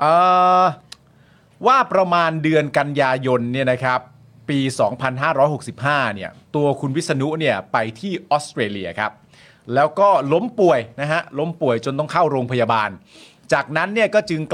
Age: 30-49